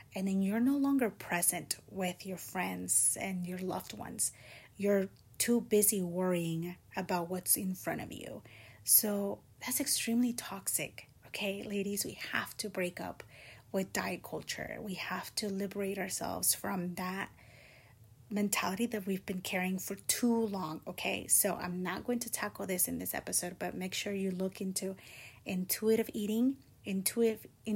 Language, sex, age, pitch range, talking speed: English, female, 30-49, 180-205 Hz, 155 wpm